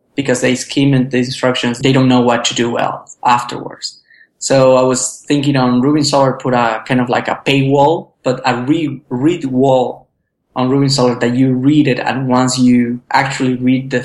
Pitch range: 125-140 Hz